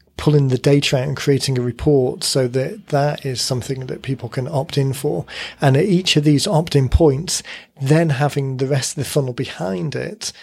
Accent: British